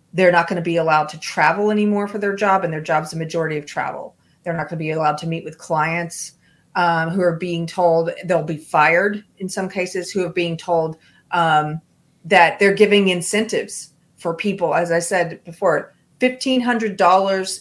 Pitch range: 165-195 Hz